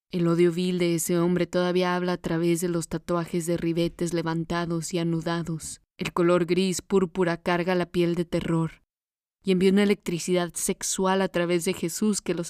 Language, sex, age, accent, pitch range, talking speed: Spanish, female, 20-39, Mexican, 165-180 Hz, 180 wpm